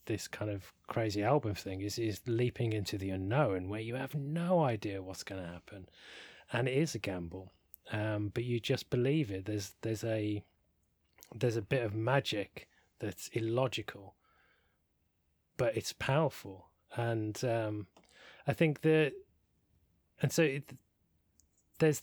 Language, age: English, 30-49